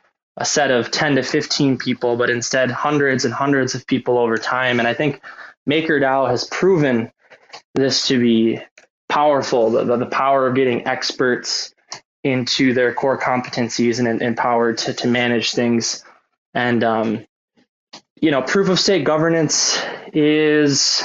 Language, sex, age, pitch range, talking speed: English, male, 20-39, 125-150 Hz, 150 wpm